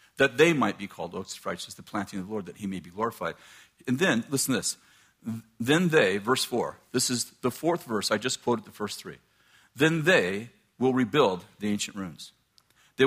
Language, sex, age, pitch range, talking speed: English, male, 50-69, 125-185 Hz, 205 wpm